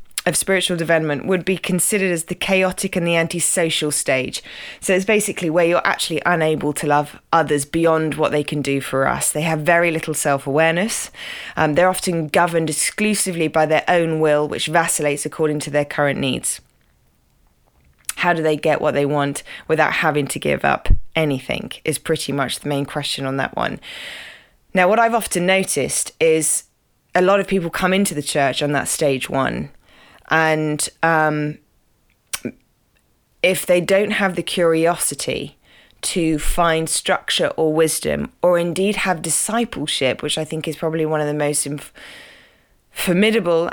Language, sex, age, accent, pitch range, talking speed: English, female, 20-39, British, 150-180 Hz, 160 wpm